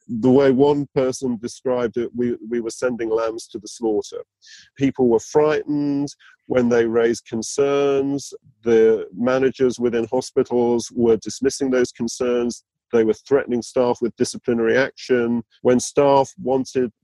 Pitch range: 115-140 Hz